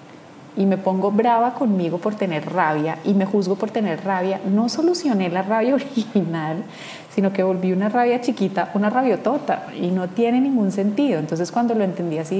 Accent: Colombian